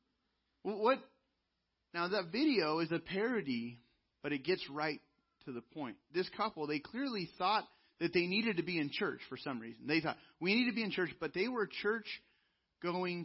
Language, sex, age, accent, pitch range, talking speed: English, male, 30-49, American, 130-180 Hz, 180 wpm